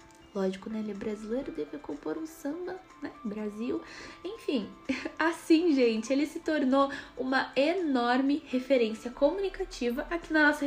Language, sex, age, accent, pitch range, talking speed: Portuguese, female, 10-29, Brazilian, 230-325 Hz, 135 wpm